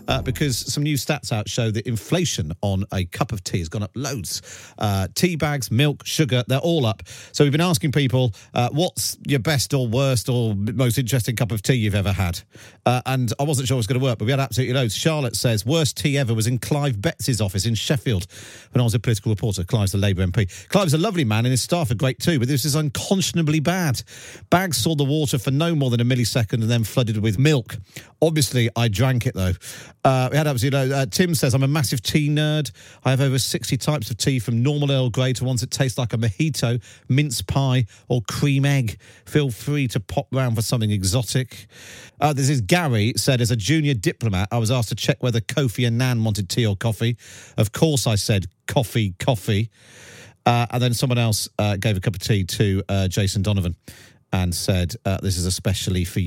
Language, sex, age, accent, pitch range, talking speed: English, male, 40-59, British, 110-140 Hz, 220 wpm